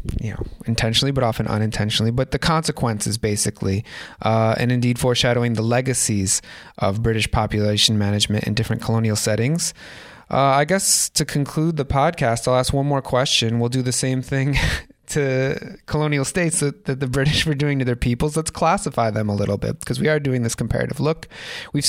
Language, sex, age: English, male, 20-39